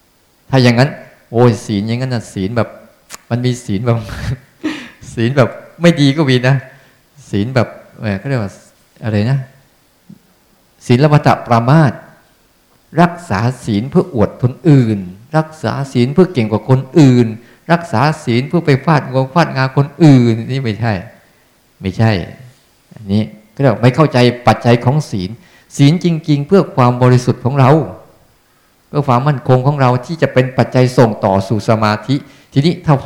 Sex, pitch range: male, 115-150 Hz